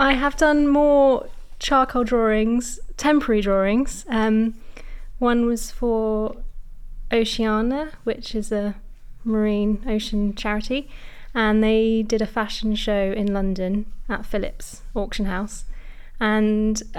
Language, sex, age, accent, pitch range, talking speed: English, female, 20-39, British, 195-220 Hz, 115 wpm